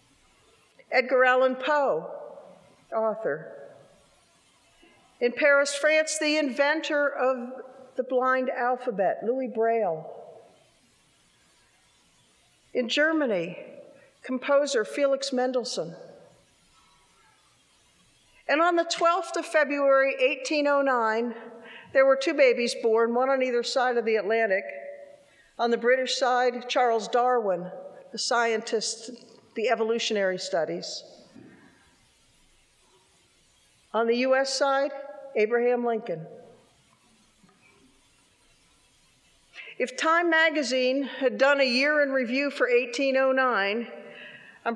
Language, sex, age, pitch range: English, female, 50-69, 235-285 Hz